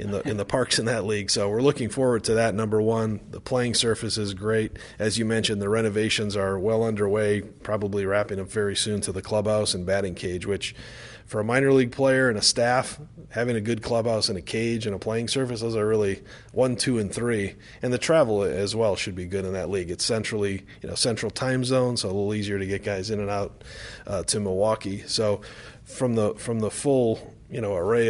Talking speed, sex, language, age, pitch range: 230 wpm, male, English, 30-49, 100-120 Hz